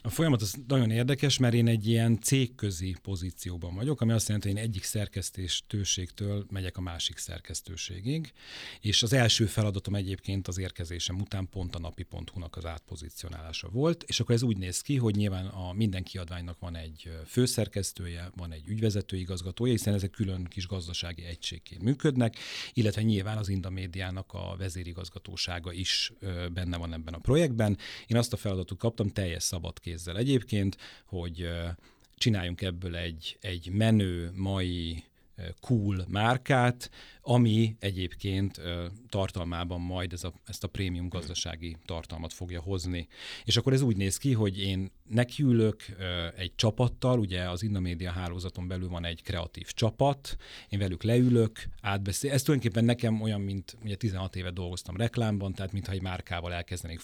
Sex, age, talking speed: male, 40-59, 150 wpm